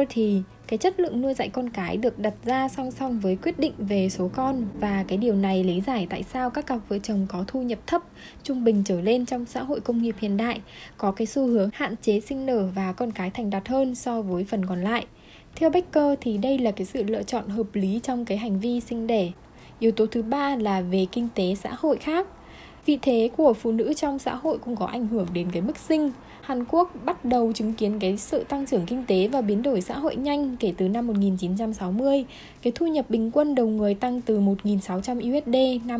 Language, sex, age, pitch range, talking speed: Vietnamese, female, 10-29, 205-265 Hz, 240 wpm